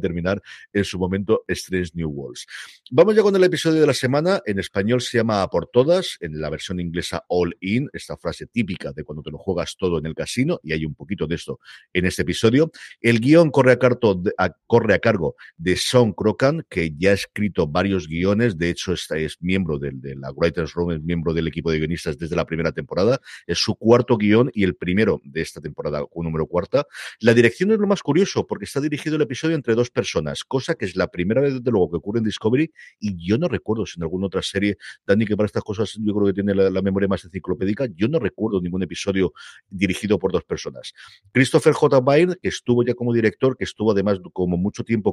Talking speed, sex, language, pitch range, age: 225 wpm, male, Spanish, 90-125 Hz, 50-69